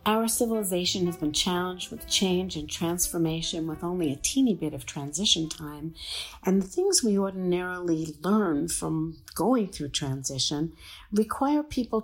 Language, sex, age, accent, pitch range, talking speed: English, female, 50-69, American, 155-220 Hz, 145 wpm